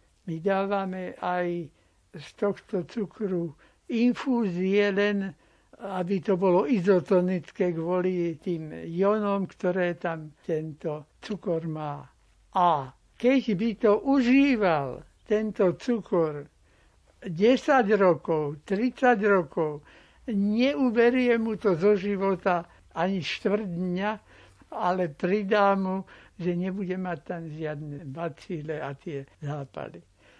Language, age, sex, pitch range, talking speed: Slovak, 60-79, male, 170-210 Hz, 100 wpm